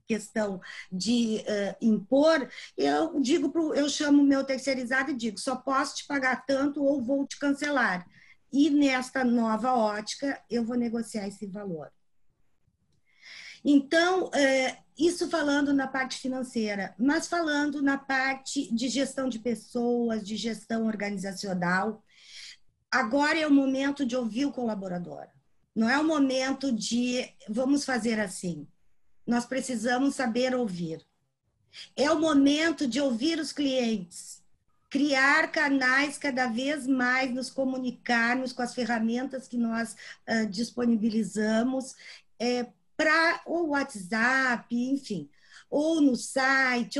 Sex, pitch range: female, 225-275 Hz